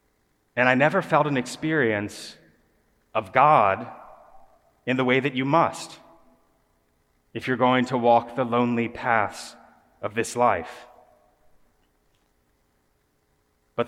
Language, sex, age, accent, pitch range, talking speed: English, male, 30-49, American, 115-140 Hz, 110 wpm